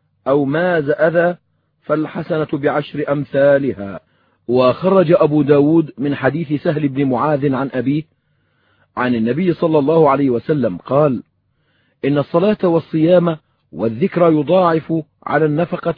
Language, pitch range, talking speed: Arabic, 145-180 Hz, 115 wpm